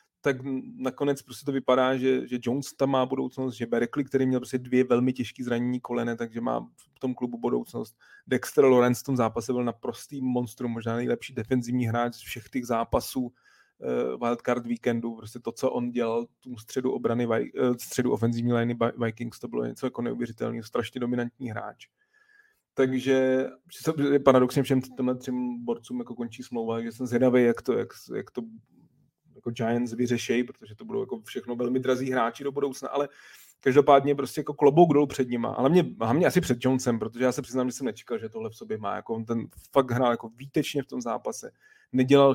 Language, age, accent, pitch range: Czech, 30-49, native, 120-135 Hz